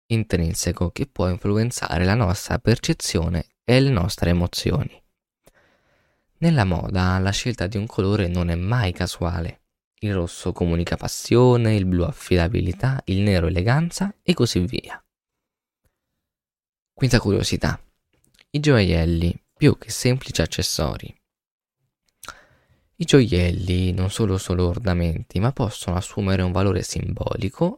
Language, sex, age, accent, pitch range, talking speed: Italian, male, 20-39, native, 90-120 Hz, 120 wpm